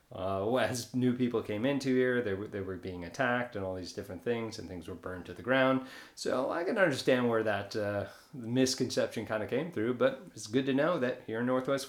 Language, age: English, 30-49